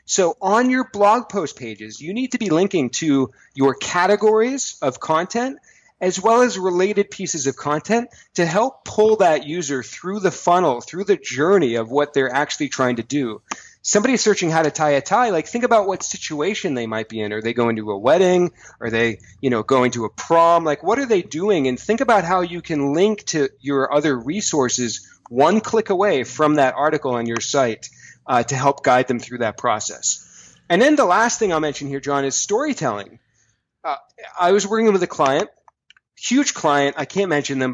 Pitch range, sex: 130-200 Hz, male